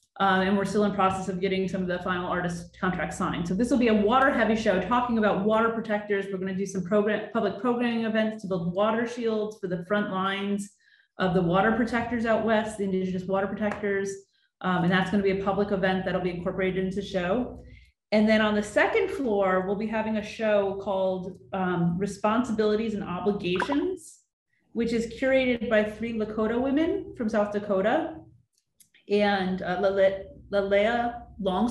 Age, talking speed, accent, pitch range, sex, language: 30-49, 185 wpm, American, 185-220 Hz, female, English